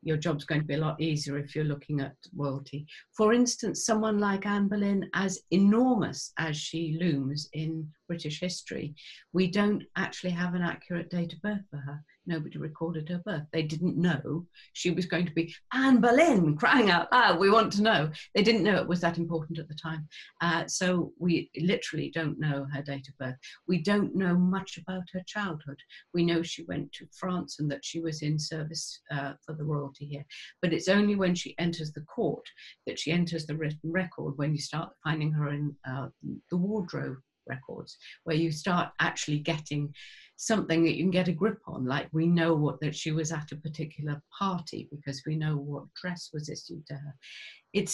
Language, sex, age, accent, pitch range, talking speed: English, female, 50-69, British, 150-180 Hz, 200 wpm